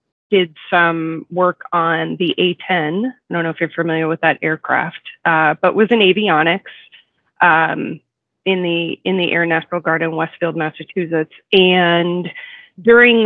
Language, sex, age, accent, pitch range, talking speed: English, female, 30-49, American, 160-190 Hz, 150 wpm